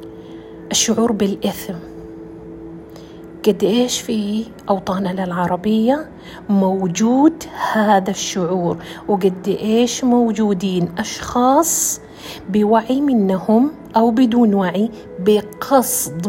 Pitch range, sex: 180-230 Hz, female